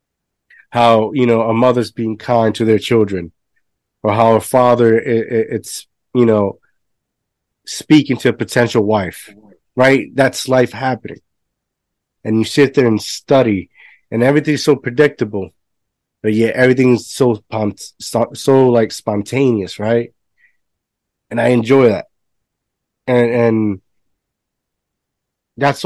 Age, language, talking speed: 30-49, English, 115 wpm